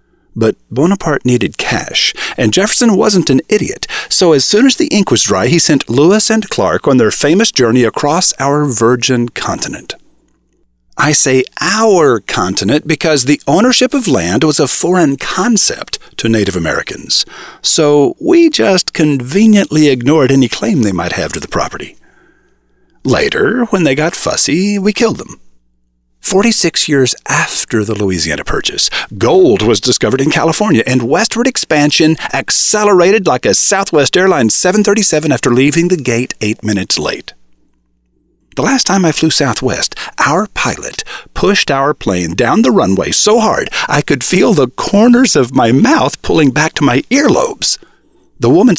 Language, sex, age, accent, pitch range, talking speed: English, male, 50-69, American, 125-200 Hz, 155 wpm